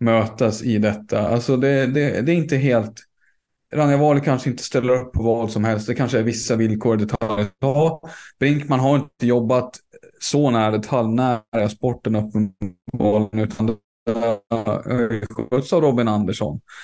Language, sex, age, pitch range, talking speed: Swedish, male, 20-39, 110-130 Hz, 135 wpm